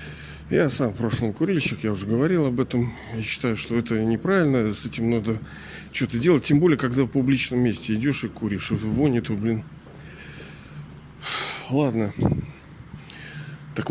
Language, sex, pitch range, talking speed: Russian, male, 105-145 Hz, 145 wpm